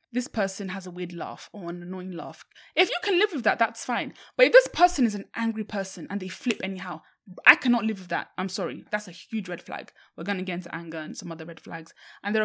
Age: 20-39